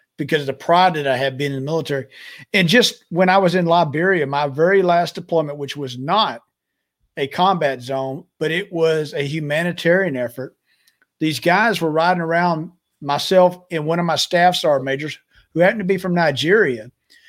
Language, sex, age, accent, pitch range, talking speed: English, male, 50-69, American, 145-200 Hz, 185 wpm